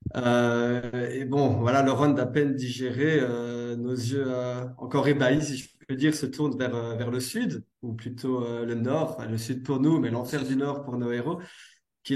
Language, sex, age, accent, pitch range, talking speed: French, male, 20-39, French, 120-140 Hz, 210 wpm